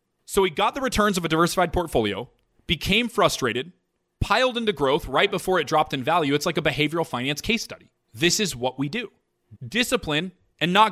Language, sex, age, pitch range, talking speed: English, male, 30-49, 140-195 Hz, 190 wpm